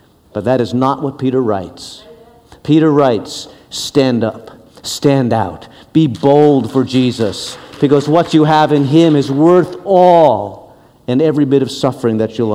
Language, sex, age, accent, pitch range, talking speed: English, male, 50-69, American, 115-155 Hz, 160 wpm